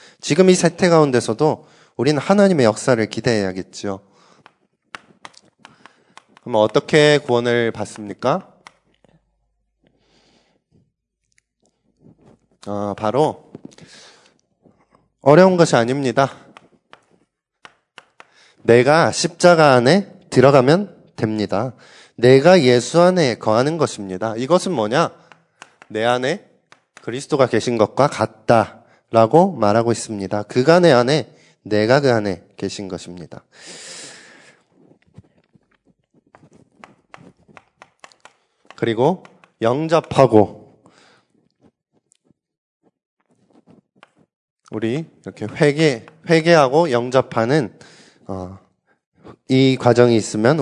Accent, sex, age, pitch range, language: native, male, 20-39, 110-155 Hz, Korean